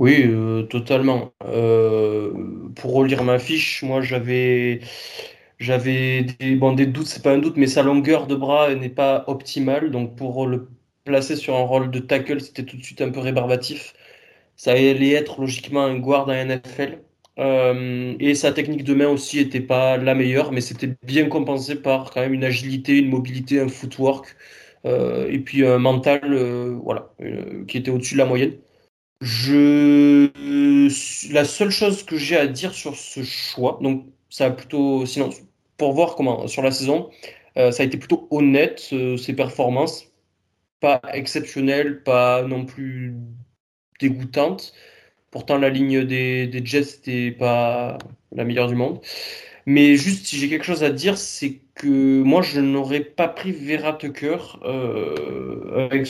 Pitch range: 130-145 Hz